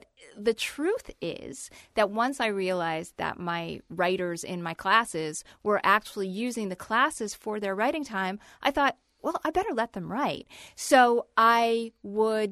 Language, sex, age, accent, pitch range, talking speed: English, female, 40-59, American, 190-250 Hz, 160 wpm